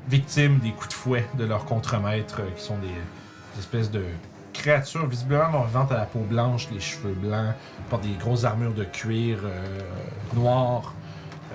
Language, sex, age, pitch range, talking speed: French, male, 40-59, 110-135 Hz, 170 wpm